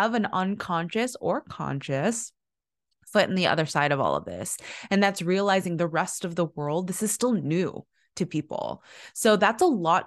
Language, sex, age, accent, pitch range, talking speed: English, female, 20-39, American, 160-205 Hz, 190 wpm